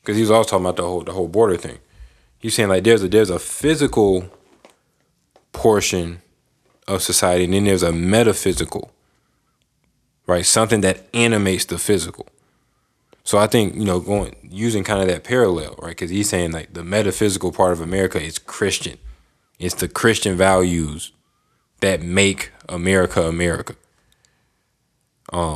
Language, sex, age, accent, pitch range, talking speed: English, male, 20-39, American, 85-100 Hz, 155 wpm